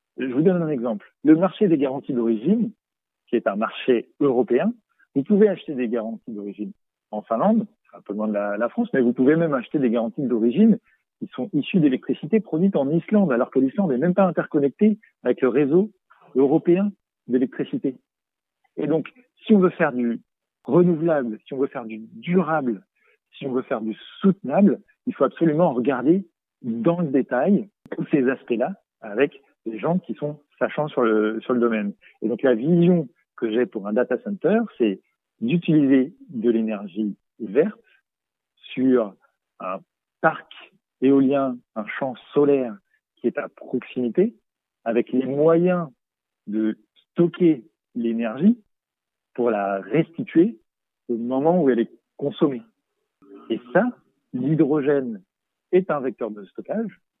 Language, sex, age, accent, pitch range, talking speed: French, male, 50-69, French, 120-185 Hz, 155 wpm